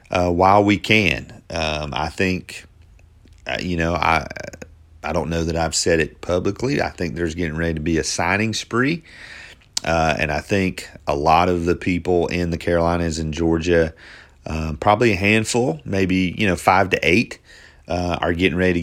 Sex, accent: male, American